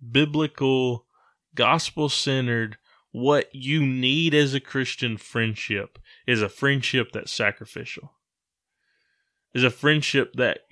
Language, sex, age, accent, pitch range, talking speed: English, male, 20-39, American, 115-145 Hz, 105 wpm